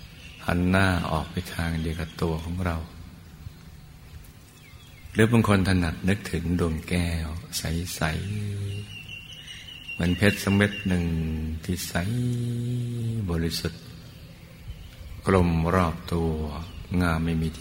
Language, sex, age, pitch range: Thai, male, 60-79, 80-90 Hz